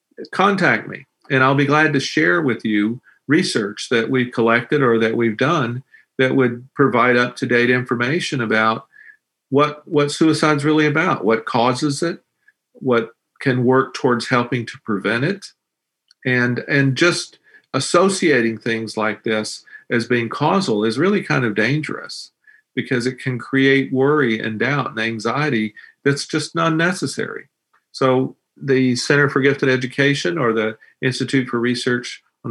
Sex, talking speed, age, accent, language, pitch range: male, 150 wpm, 50-69, American, English, 115-145 Hz